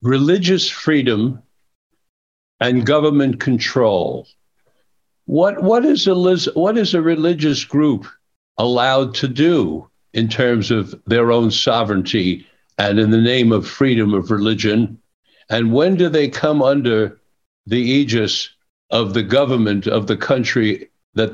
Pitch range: 115-150 Hz